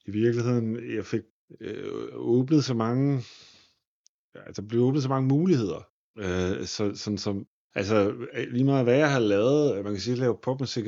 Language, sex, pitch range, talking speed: Danish, male, 110-130 Hz, 190 wpm